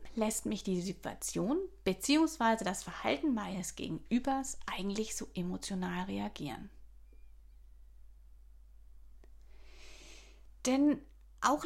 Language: German